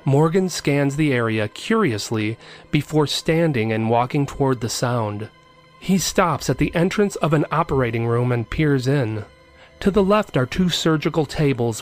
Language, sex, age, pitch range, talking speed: English, male, 30-49, 120-160 Hz, 155 wpm